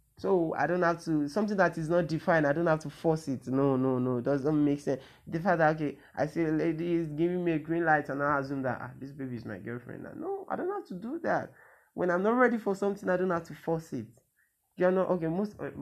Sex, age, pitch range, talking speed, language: male, 20-39, 125-160 Hz, 270 wpm, English